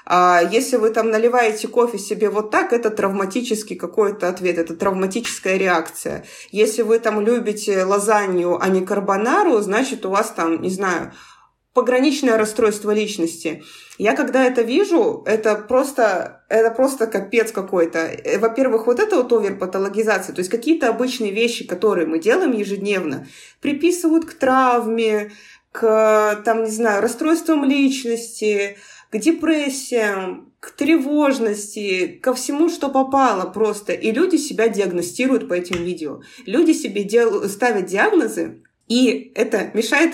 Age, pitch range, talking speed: 30-49, 195-245 Hz, 135 wpm